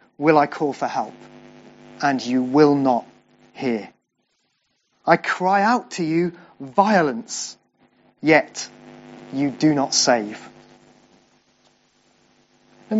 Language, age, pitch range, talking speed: English, 30-49, 155-215 Hz, 100 wpm